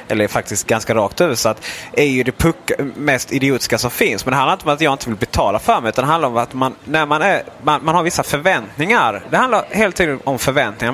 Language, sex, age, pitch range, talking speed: Swedish, male, 20-39, 105-140 Hz, 250 wpm